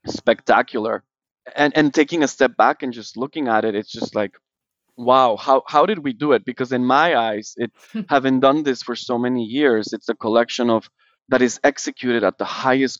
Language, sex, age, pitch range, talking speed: English, male, 20-39, 110-135 Hz, 205 wpm